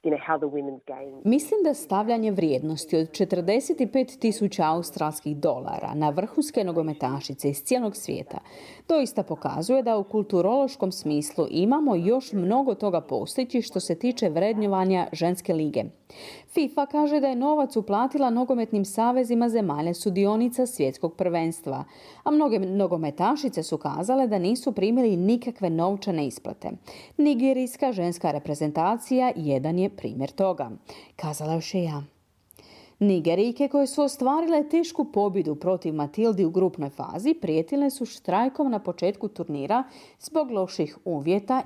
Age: 40-59